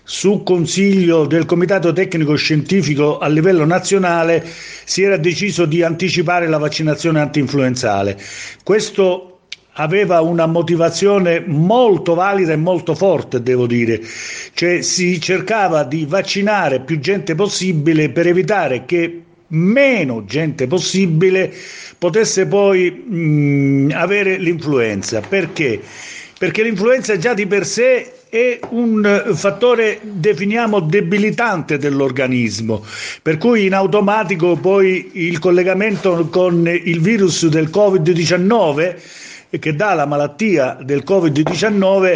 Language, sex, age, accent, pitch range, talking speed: Italian, male, 50-69, native, 160-200 Hz, 110 wpm